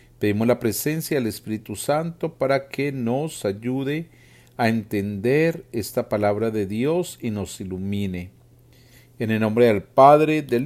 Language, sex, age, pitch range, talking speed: Spanish, male, 40-59, 115-165 Hz, 140 wpm